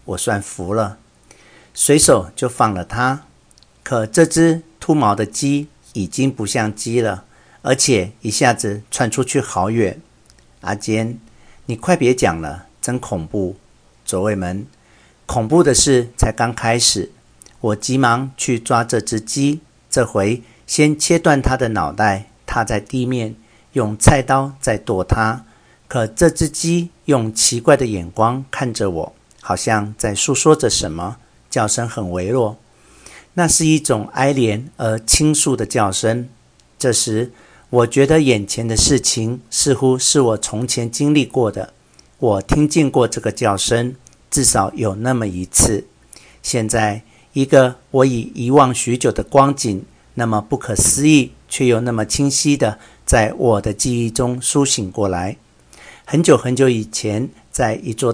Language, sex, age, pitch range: Chinese, male, 50-69, 105-135 Hz